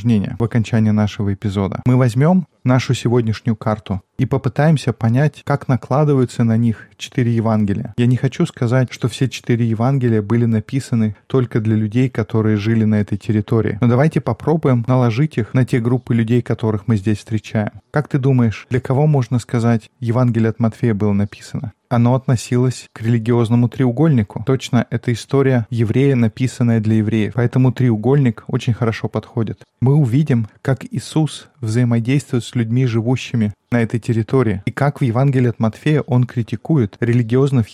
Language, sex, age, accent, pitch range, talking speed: Russian, male, 20-39, native, 110-130 Hz, 155 wpm